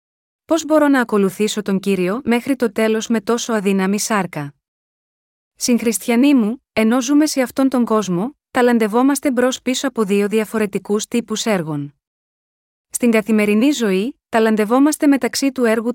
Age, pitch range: 20-39, 205-255 Hz